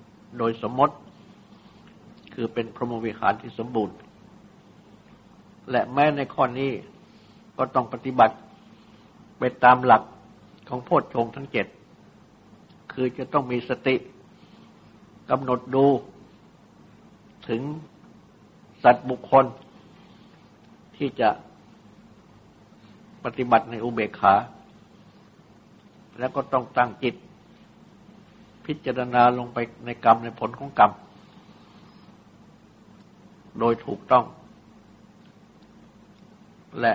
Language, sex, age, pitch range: Thai, male, 60-79, 115-135 Hz